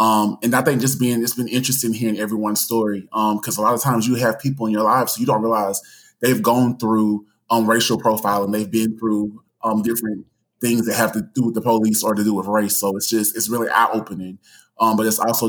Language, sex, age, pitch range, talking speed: English, male, 20-39, 105-115 Hz, 220 wpm